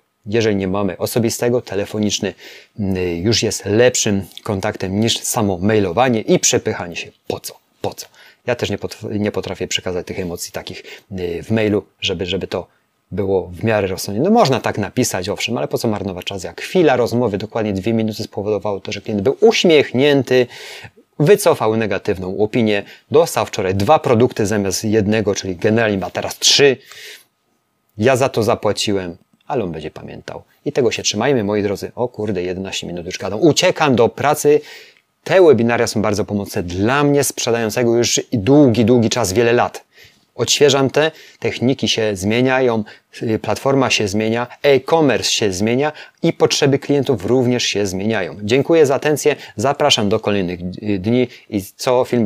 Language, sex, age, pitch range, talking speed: Polish, male, 30-49, 100-125 Hz, 155 wpm